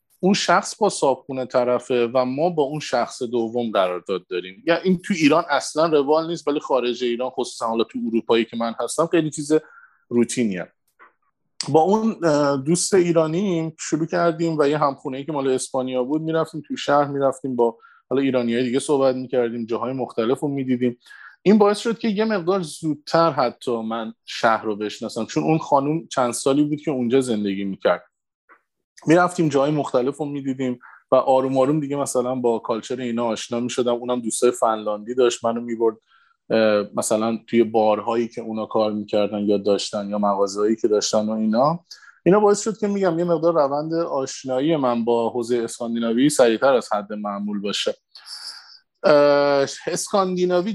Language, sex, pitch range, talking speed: Persian, male, 115-160 Hz, 170 wpm